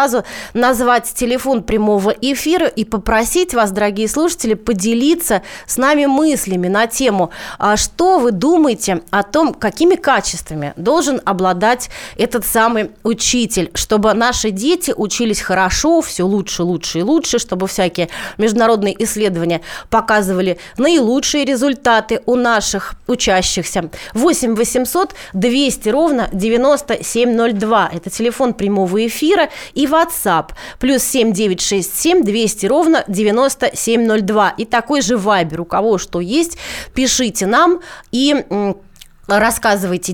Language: Russian